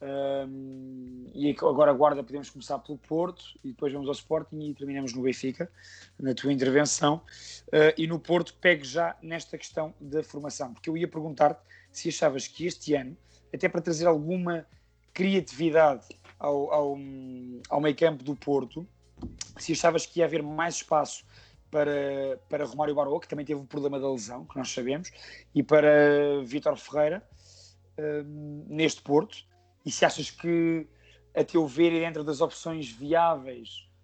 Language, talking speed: Portuguese, 160 wpm